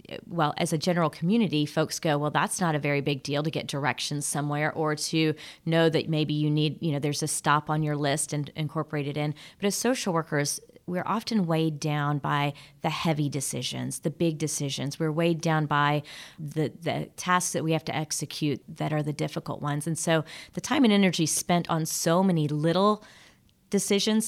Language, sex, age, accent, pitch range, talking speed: English, female, 30-49, American, 150-175 Hz, 200 wpm